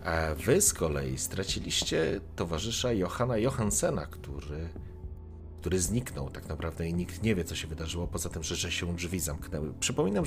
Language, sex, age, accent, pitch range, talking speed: Polish, male, 40-59, native, 80-100 Hz, 160 wpm